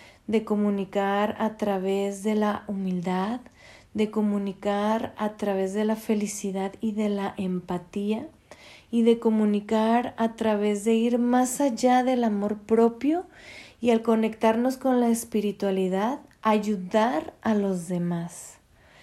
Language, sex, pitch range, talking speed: Spanish, female, 205-240 Hz, 125 wpm